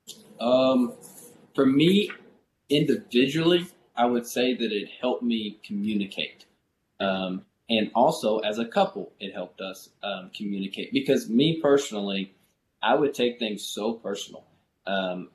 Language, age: English, 20-39